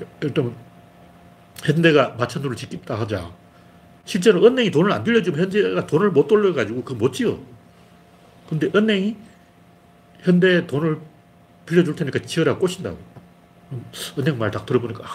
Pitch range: 105-175 Hz